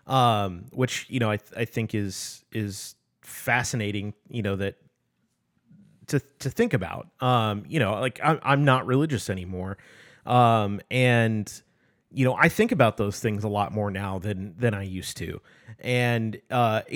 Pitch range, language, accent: 105-140 Hz, English, American